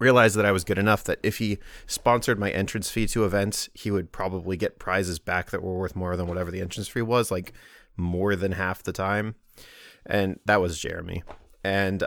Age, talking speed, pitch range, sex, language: 30-49, 210 wpm, 90-105 Hz, male, English